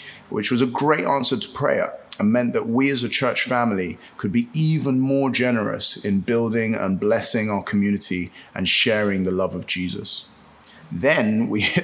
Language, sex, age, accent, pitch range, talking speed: English, male, 30-49, British, 105-135 Hz, 175 wpm